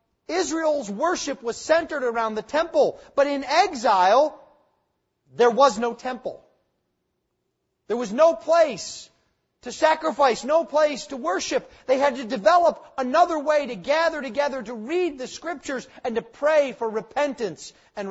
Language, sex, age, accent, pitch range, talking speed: English, male, 40-59, American, 240-315 Hz, 145 wpm